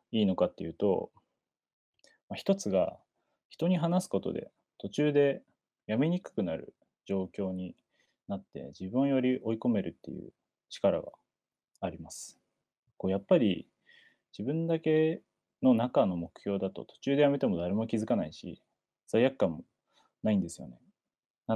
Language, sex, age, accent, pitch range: Japanese, male, 20-39, native, 95-140 Hz